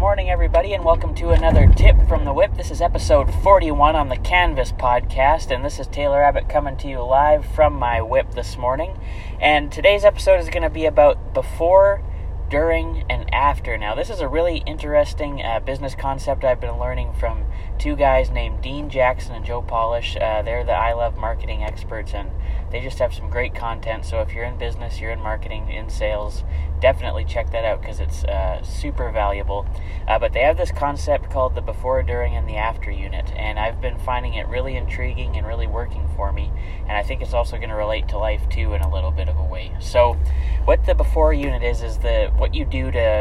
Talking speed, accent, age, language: 215 wpm, American, 30-49, English